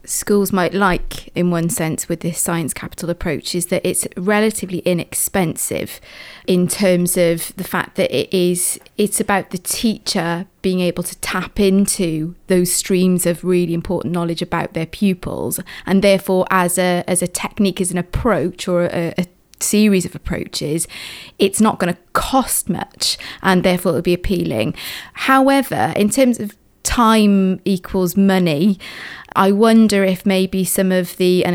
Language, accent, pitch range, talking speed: English, British, 180-210 Hz, 160 wpm